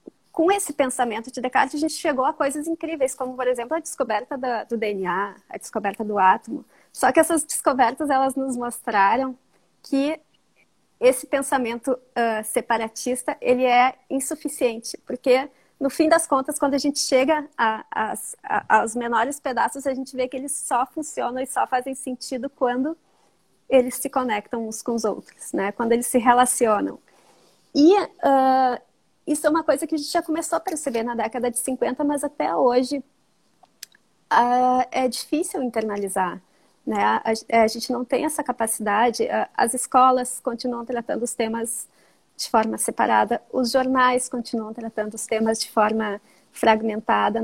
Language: Portuguese